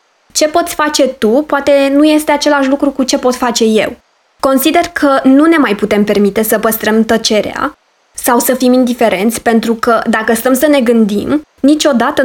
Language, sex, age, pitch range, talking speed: Romanian, female, 20-39, 225-295 Hz, 175 wpm